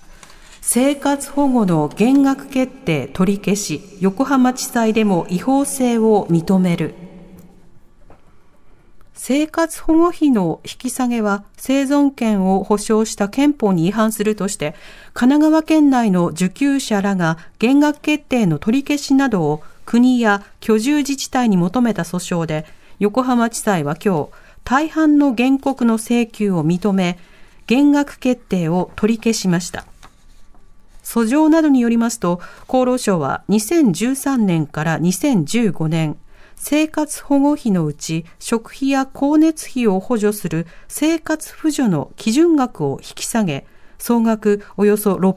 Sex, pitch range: female, 180-270 Hz